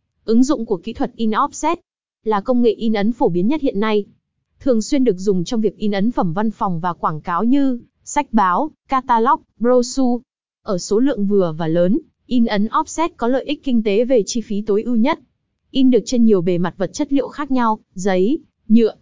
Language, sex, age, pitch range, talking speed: Vietnamese, female, 20-39, 205-260 Hz, 220 wpm